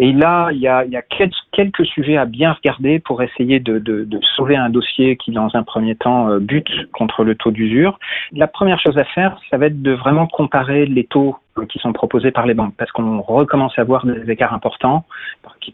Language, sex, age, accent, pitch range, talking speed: French, male, 40-59, French, 115-145 Hz, 225 wpm